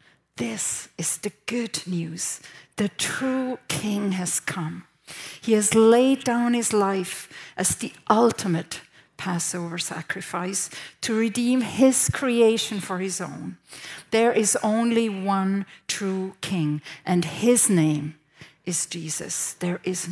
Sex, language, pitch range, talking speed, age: female, English, 160-205 Hz, 120 wpm, 50-69